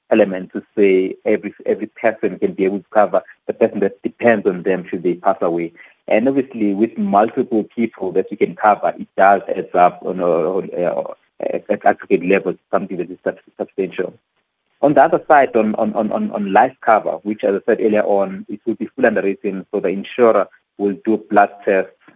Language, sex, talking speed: English, male, 195 wpm